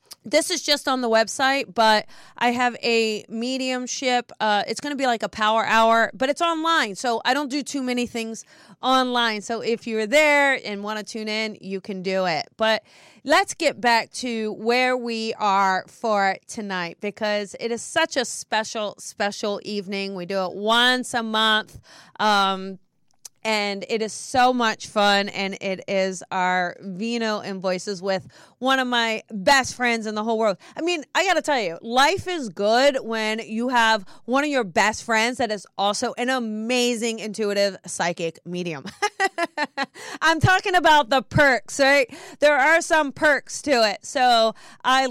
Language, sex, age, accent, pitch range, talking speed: English, female, 30-49, American, 205-265 Hz, 175 wpm